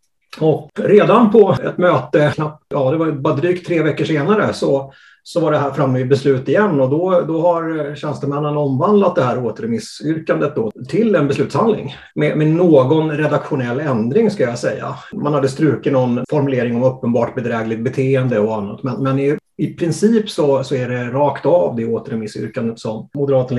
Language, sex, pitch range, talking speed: Swedish, male, 130-175 Hz, 175 wpm